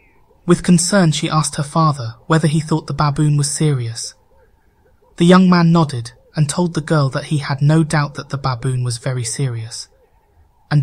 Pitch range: 120-155 Hz